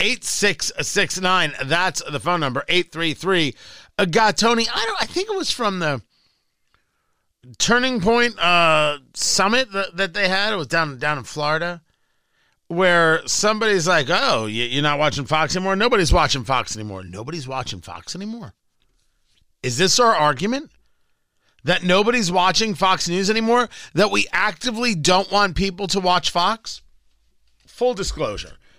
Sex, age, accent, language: male, 40-59, American, English